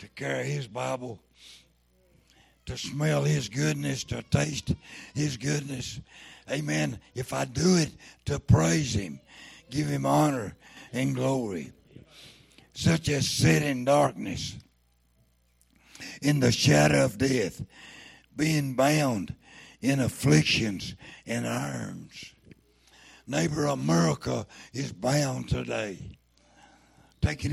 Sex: male